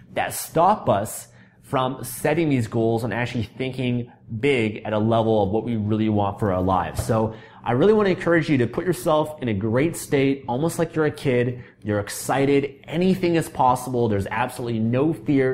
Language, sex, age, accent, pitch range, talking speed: English, male, 30-49, American, 110-135 Hz, 195 wpm